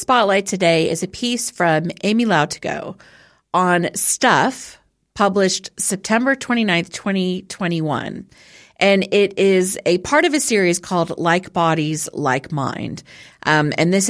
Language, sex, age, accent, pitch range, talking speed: English, female, 40-59, American, 155-200 Hz, 130 wpm